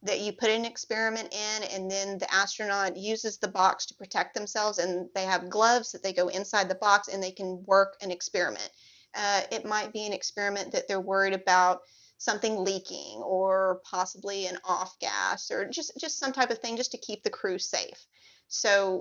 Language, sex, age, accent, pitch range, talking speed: English, female, 30-49, American, 190-225 Hz, 200 wpm